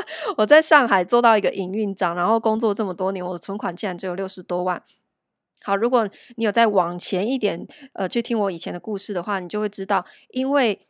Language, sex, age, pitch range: Chinese, female, 20-39, 185-235 Hz